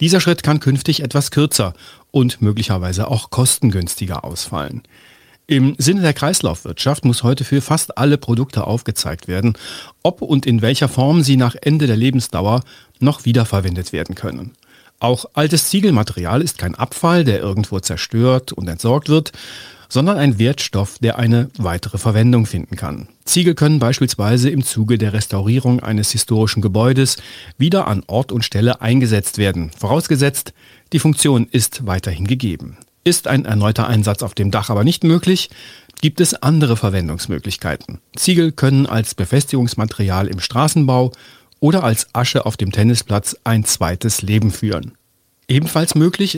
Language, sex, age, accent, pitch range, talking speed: German, male, 40-59, German, 105-140 Hz, 145 wpm